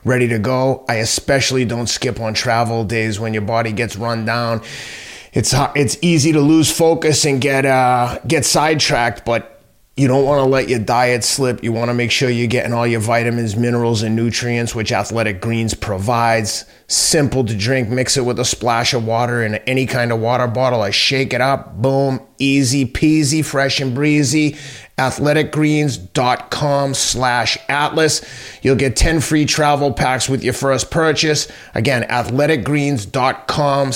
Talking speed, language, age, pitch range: 165 wpm, English, 30-49, 120-145 Hz